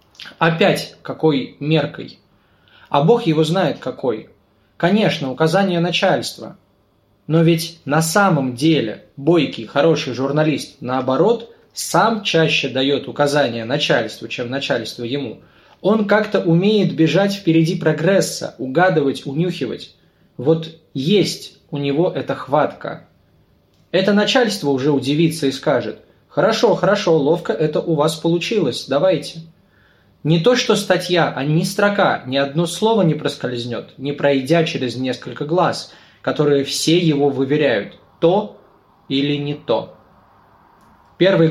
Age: 20-39